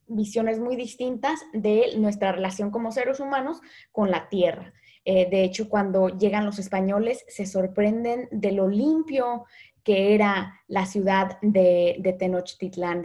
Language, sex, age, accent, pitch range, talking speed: Spanish, female, 20-39, Mexican, 195-230 Hz, 145 wpm